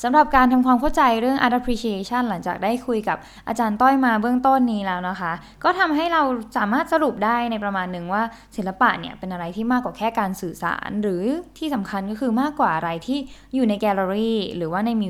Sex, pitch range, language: female, 185-245 Hz, Thai